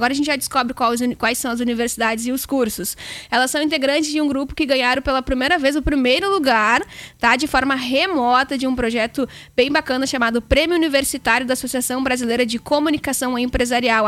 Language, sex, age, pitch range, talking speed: Portuguese, female, 10-29, 240-275 Hz, 190 wpm